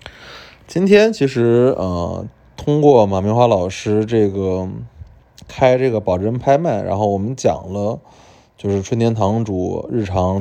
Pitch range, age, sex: 95-120 Hz, 20-39, male